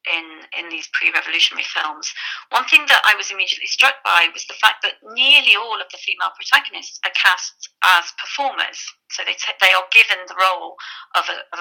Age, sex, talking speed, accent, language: 40-59, female, 195 wpm, British, English